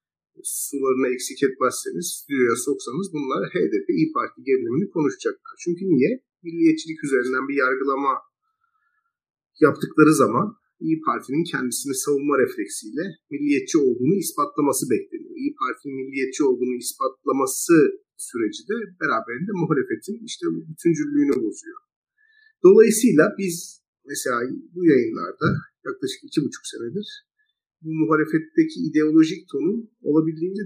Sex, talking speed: male, 105 wpm